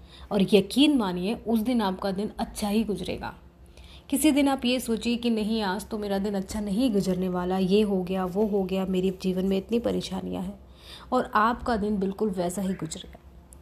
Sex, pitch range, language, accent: female, 185-230 Hz, Hindi, native